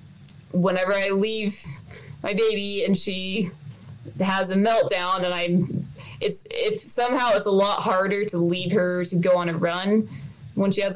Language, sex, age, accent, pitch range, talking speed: English, female, 20-39, American, 170-205 Hz, 165 wpm